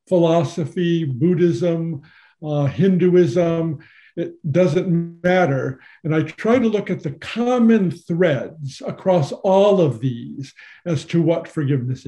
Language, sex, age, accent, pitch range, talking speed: English, male, 50-69, American, 155-195 Hz, 120 wpm